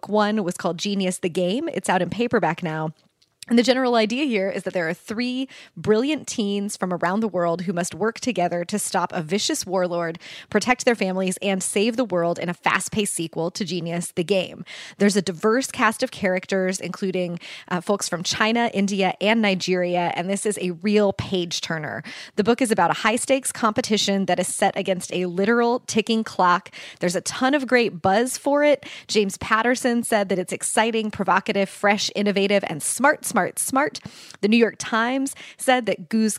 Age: 20-39